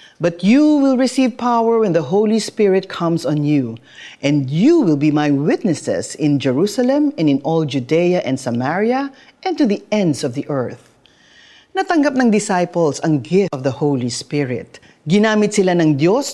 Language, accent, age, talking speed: Filipino, native, 40-59, 170 wpm